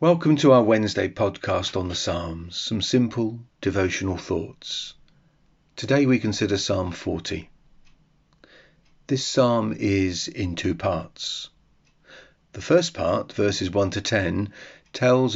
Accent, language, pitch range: British, English, 95-120 Hz